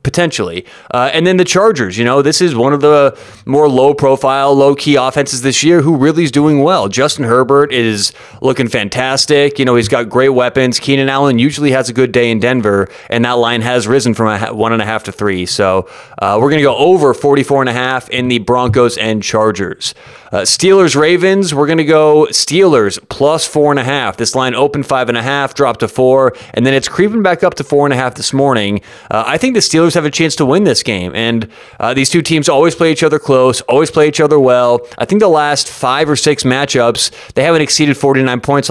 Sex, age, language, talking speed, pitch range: male, 30-49, English, 235 wpm, 115-145 Hz